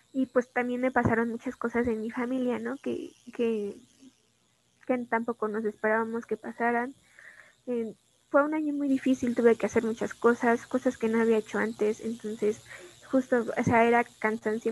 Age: 20-39